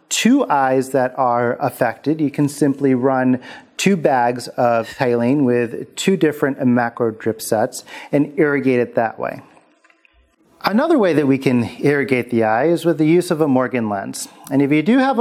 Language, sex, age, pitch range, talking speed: English, male, 40-59, 125-160 Hz, 175 wpm